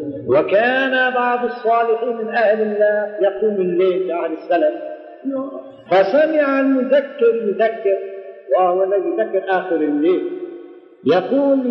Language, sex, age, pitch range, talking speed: Arabic, male, 50-69, 200-275 Hz, 95 wpm